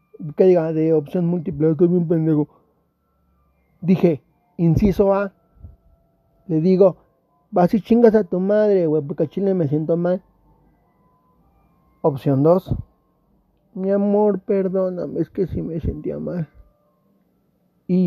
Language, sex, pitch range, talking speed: Spanish, male, 150-195 Hz, 125 wpm